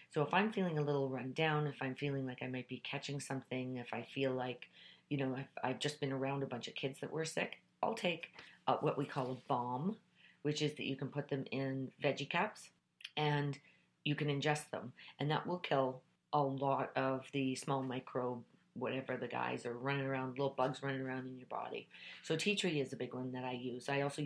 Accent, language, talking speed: American, English, 230 wpm